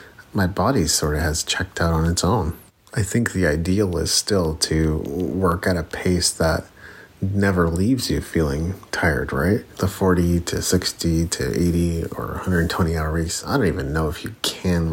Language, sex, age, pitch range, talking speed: English, male, 40-59, 80-95 Hz, 180 wpm